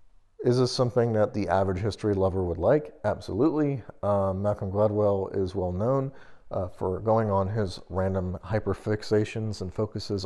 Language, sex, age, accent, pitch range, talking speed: English, male, 40-59, American, 95-115 Hz, 150 wpm